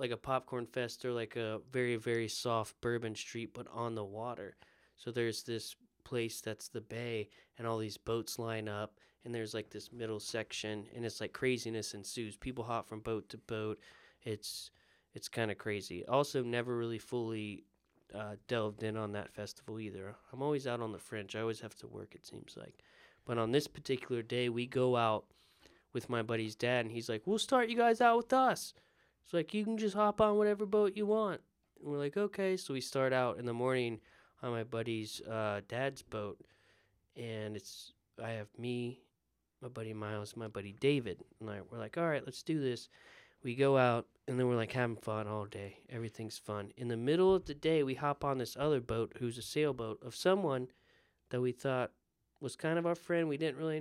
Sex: male